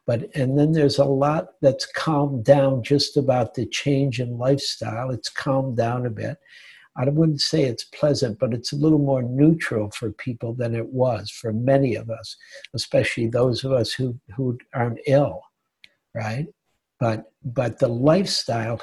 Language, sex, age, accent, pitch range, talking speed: English, male, 60-79, American, 120-145 Hz, 170 wpm